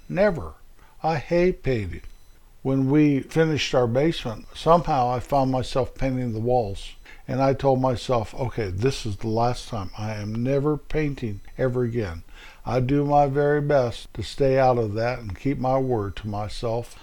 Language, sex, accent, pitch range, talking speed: English, male, American, 120-140 Hz, 170 wpm